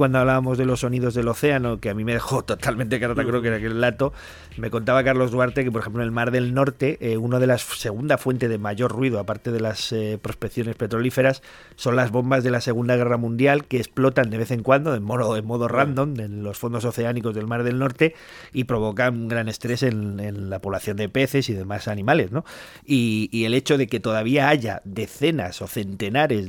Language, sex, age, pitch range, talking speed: English, male, 30-49, 110-135 Hz, 230 wpm